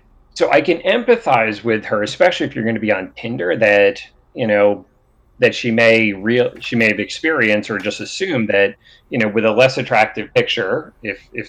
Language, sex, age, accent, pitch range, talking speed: English, male, 30-49, American, 105-125 Hz, 200 wpm